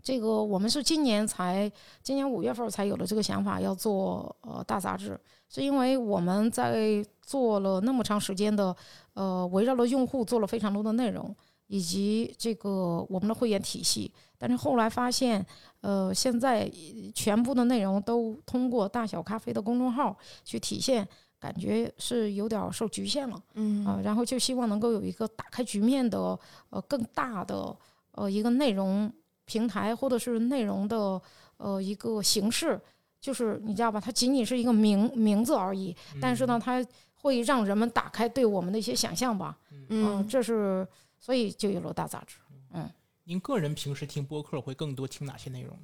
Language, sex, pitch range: Chinese, female, 190-235 Hz